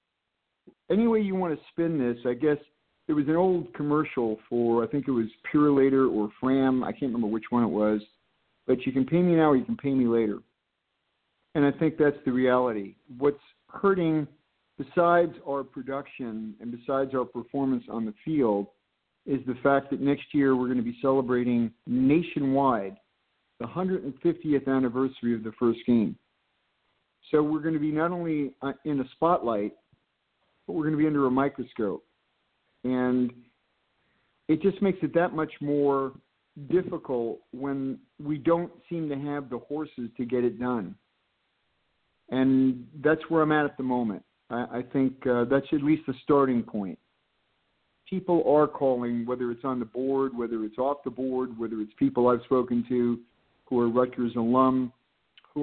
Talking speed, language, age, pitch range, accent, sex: 170 wpm, English, 50-69, 120-150 Hz, American, male